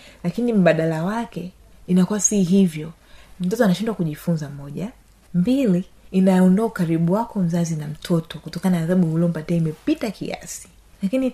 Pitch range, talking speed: 170-205 Hz, 125 wpm